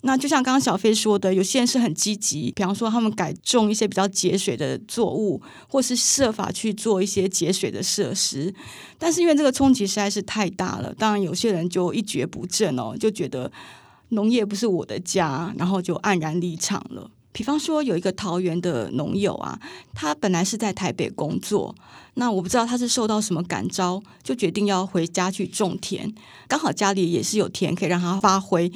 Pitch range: 185-230 Hz